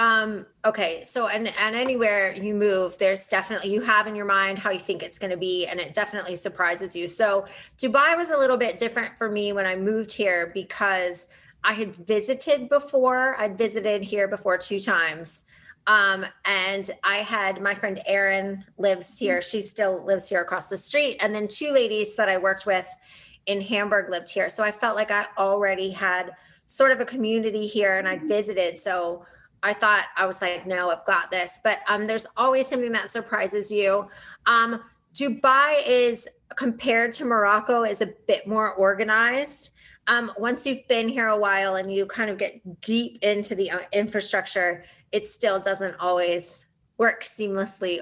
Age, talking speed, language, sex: 30-49, 180 wpm, English, female